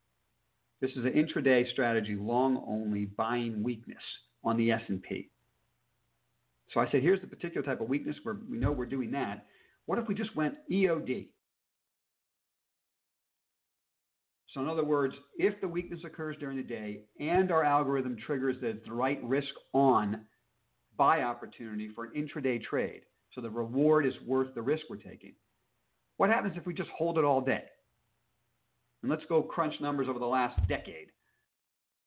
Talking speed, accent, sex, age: 155 wpm, American, male, 50-69